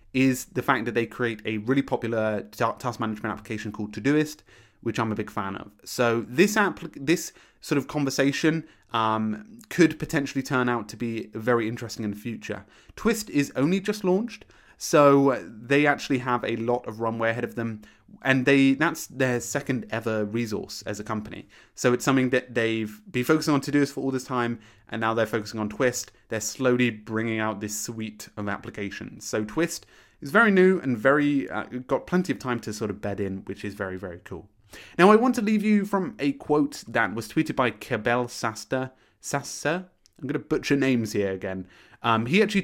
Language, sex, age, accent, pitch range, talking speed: English, male, 20-39, British, 105-140 Hz, 195 wpm